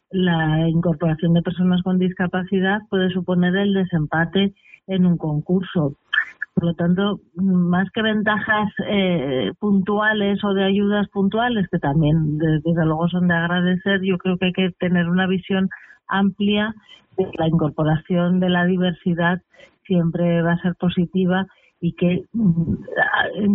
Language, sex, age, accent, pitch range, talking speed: Spanish, female, 40-59, Spanish, 175-200 Hz, 140 wpm